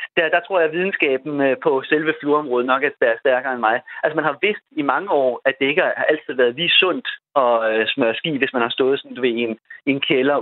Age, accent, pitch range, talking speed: 30-49, native, 125-170 Hz, 235 wpm